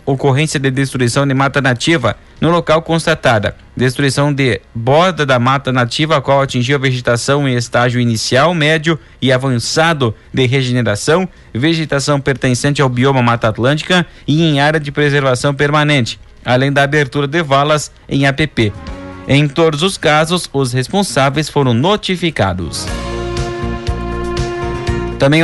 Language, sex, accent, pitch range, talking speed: Portuguese, male, Brazilian, 130-165 Hz, 130 wpm